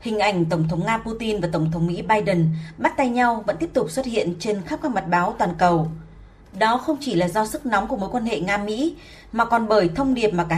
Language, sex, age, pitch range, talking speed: Vietnamese, female, 20-39, 200-255 Hz, 255 wpm